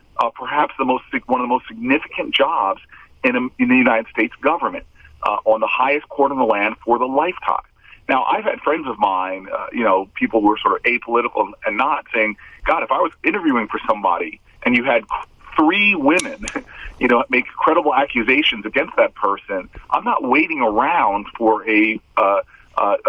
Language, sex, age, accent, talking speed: English, male, 40-59, American, 195 wpm